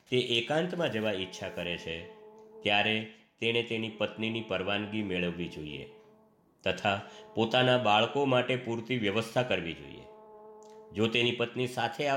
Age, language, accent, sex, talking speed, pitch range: 50-69, Gujarati, native, male, 100 wpm, 105-160 Hz